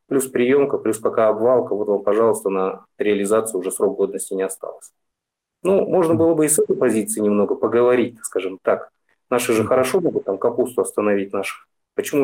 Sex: male